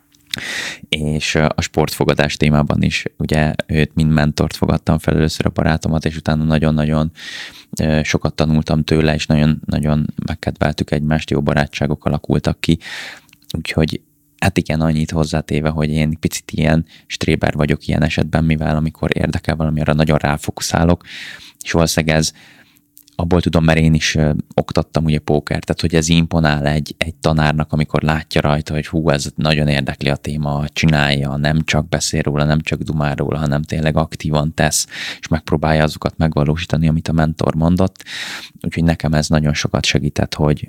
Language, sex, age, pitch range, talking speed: Hungarian, male, 20-39, 75-80 Hz, 150 wpm